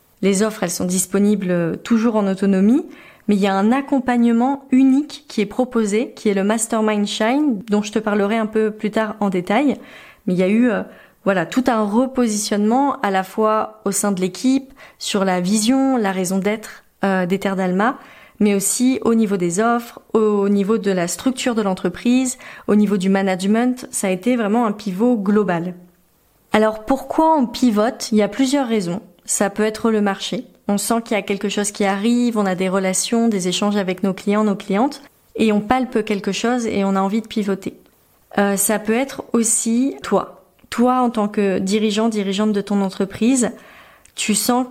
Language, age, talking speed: French, 30-49, 195 wpm